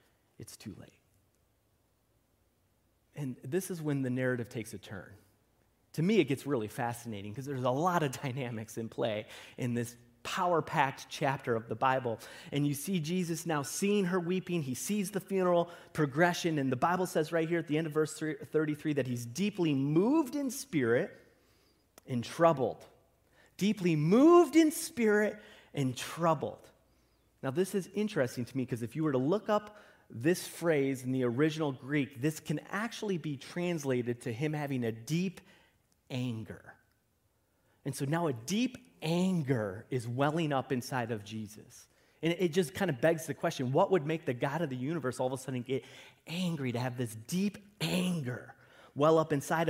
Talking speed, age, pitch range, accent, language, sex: 175 wpm, 30-49, 125-170 Hz, American, English, male